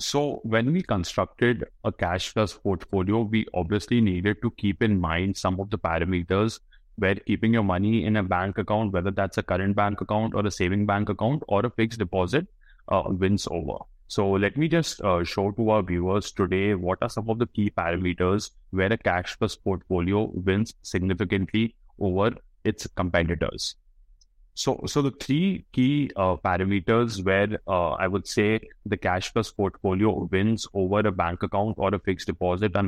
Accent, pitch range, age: Indian, 95-110 Hz, 30-49